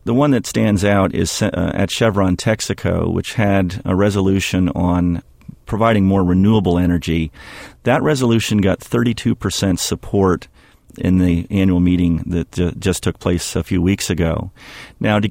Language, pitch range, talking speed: English, 90-105 Hz, 150 wpm